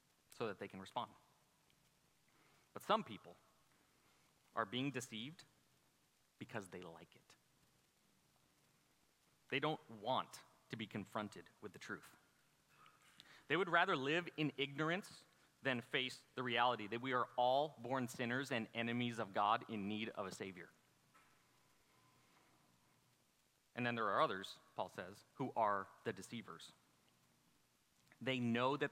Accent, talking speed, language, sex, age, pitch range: American, 130 wpm, English, male, 30-49, 105-135 Hz